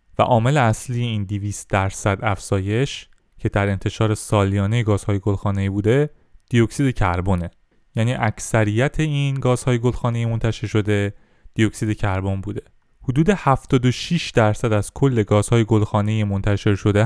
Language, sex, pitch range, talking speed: Persian, male, 100-125 Hz, 125 wpm